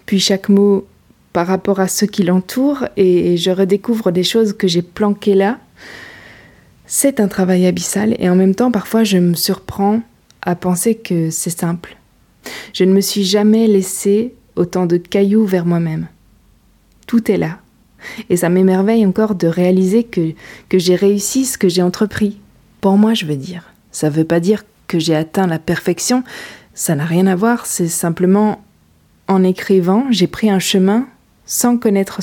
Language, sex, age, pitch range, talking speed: French, female, 20-39, 175-215 Hz, 175 wpm